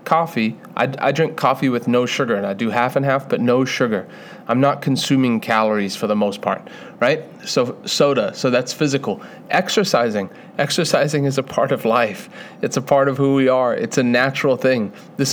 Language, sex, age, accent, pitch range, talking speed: English, male, 30-49, American, 125-150 Hz, 195 wpm